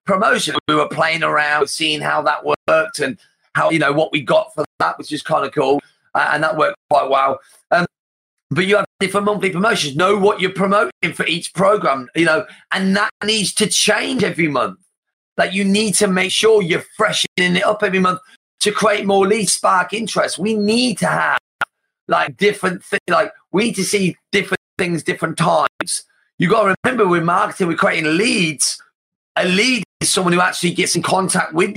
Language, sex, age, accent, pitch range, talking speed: English, male, 40-59, British, 175-210 Hz, 200 wpm